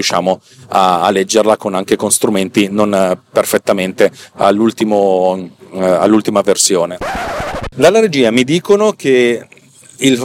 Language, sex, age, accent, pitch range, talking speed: Italian, male, 40-59, native, 105-125 Hz, 110 wpm